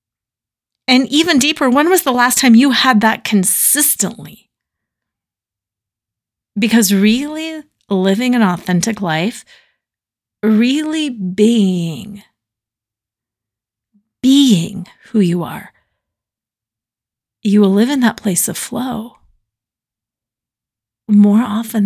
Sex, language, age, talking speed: female, English, 40-59, 95 wpm